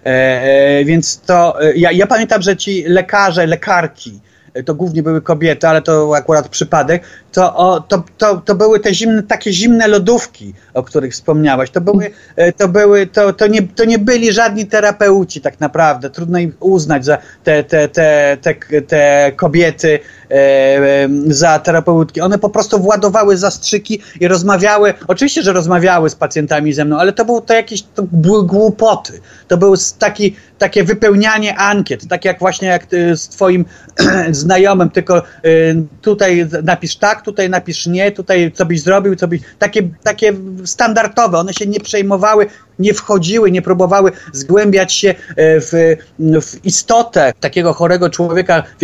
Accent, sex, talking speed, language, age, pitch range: native, male, 155 wpm, Polish, 30-49, 160-200 Hz